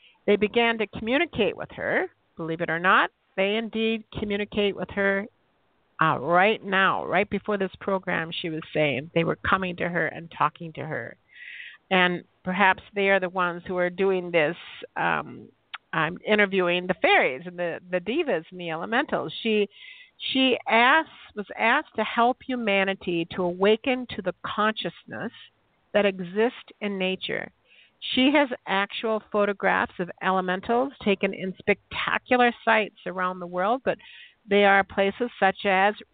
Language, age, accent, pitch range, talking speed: English, 50-69, American, 185-230 Hz, 155 wpm